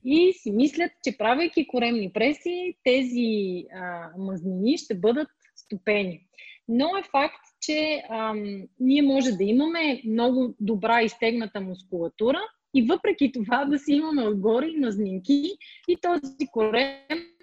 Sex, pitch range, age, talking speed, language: female, 220-295 Hz, 20-39, 125 wpm, Bulgarian